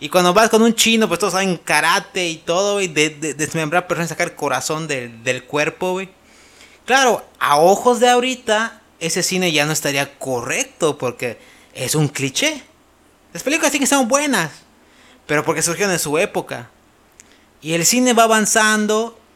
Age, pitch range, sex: 30-49, 155-225 Hz, male